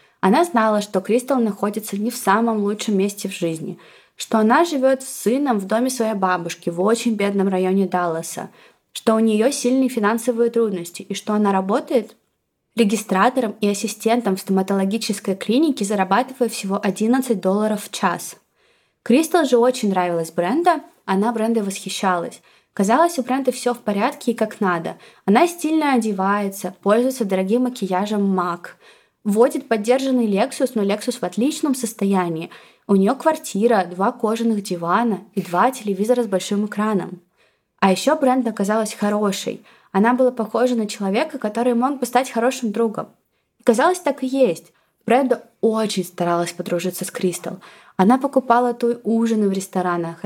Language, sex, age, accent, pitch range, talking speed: Russian, female, 20-39, native, 195-245 Hz, 150 wpm